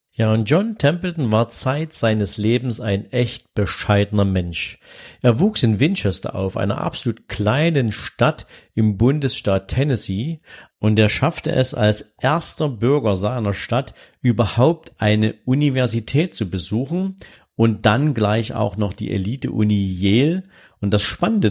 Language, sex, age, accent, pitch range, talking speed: German, male, 50-69, German, 100-125 Hz, 135 wpm